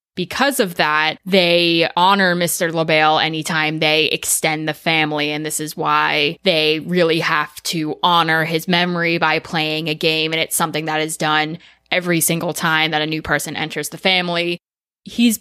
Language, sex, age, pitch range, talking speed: English, female, 20-39, 160-190 Hz, 170 wpm